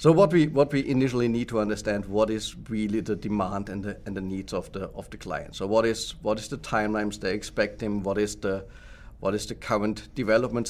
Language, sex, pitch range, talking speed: English, male, 100-115 Hz, 235 wpm